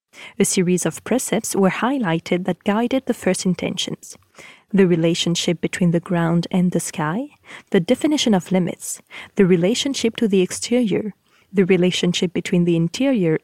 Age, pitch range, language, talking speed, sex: 30-49, 180-225 Hz, French, 145 wpm, female